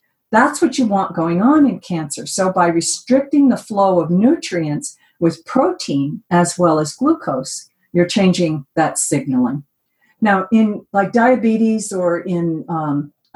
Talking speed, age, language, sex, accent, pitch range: 145 wpm, 50-69, English, female, American, 160-205 Hz